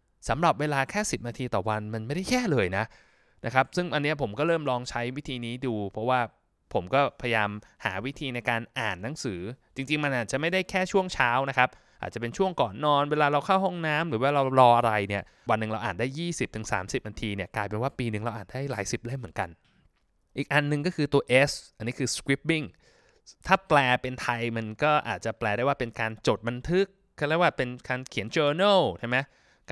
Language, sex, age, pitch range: Thai, male, 20-39, 115-150 Hz